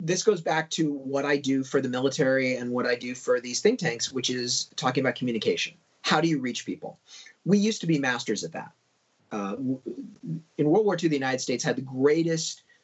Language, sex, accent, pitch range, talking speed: English, male, American, 135-200 Hz, 215 wpm